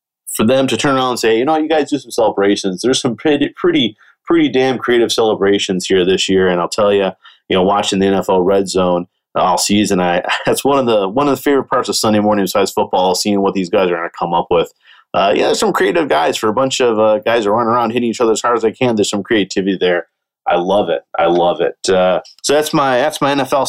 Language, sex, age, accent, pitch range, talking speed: English, male, 30-49, American, 95-130 Hz, 260 wpm